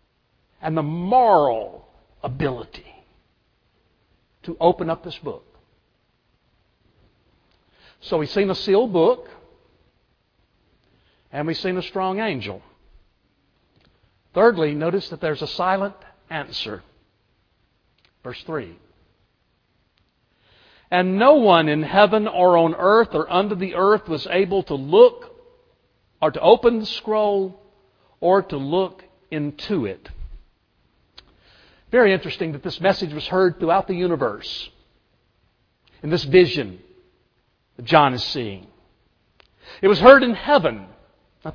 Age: 60-79